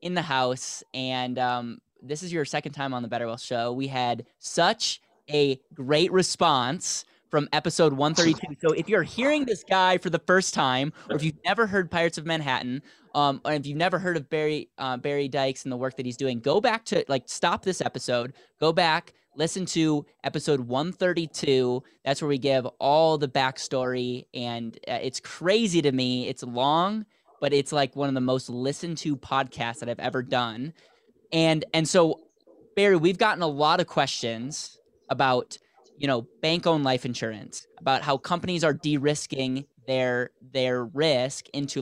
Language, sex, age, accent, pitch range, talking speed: English, male, 10-29, American, 130-160 Hz, 180 wpm